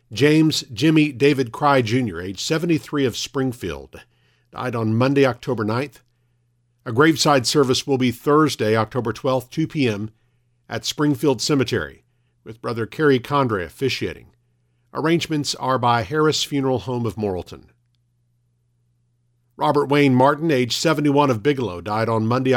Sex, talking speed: male, 135 wpm